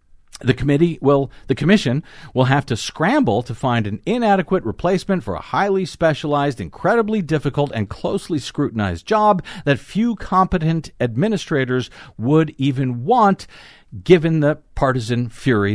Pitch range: 105-160 Hz